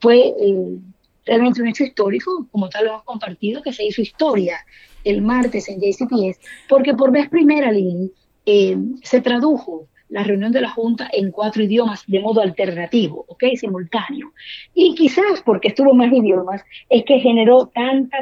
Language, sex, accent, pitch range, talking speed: Spanish, female, American, 200-260 Hz, 165 wpm